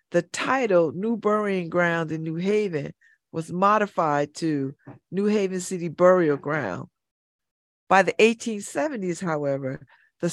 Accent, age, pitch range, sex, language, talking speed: American, 40-59, 165-260 Hz, female, English, 120 wpm